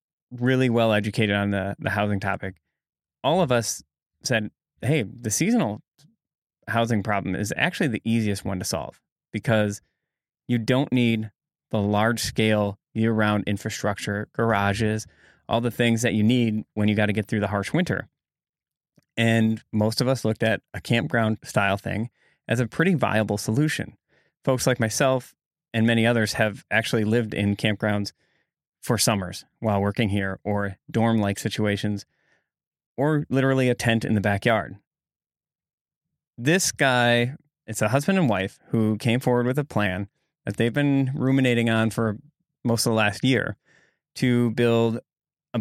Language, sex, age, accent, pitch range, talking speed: English, male, 20-39, American, 105-125 Hz, 150 wpm